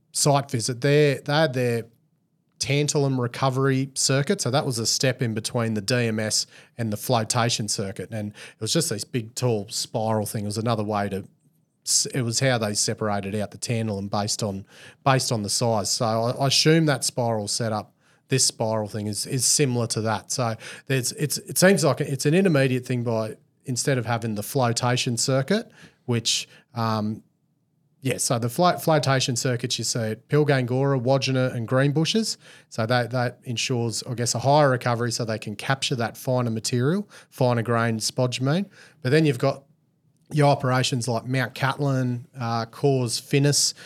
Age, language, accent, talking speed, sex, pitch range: 30-49, English, Australian, 175 wpm, male, 115-140 Hz